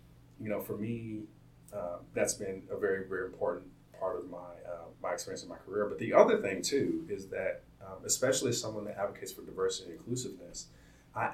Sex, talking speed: male, 200 wpm